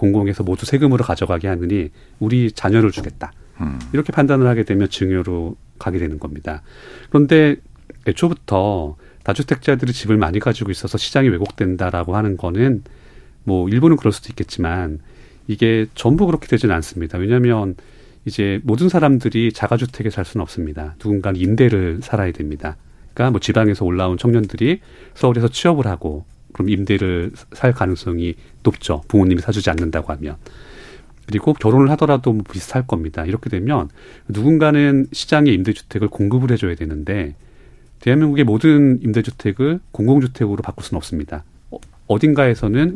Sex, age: male, 30-49